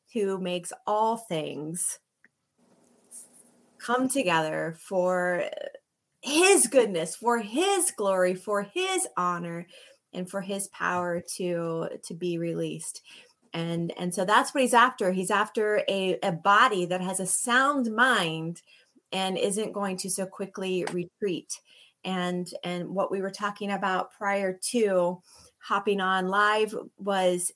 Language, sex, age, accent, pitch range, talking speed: English, female, 20-39, American, 180-225 Hz, 130 wpm